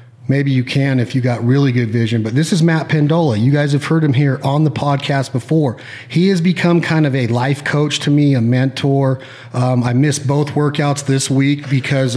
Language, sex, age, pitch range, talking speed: English, male, 40-59, 125-145 Hz, 215 wpm